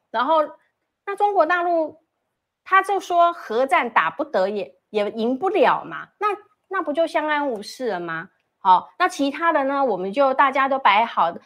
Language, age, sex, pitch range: Chinese, 30-49, female, 220-315 Hz